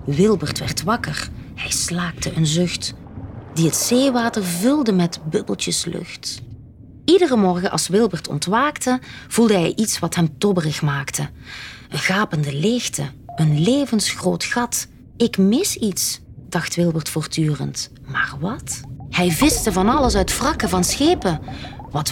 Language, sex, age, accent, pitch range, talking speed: Dutch, female, 20-39, Dutch, 135-220 Hz, 135 wpm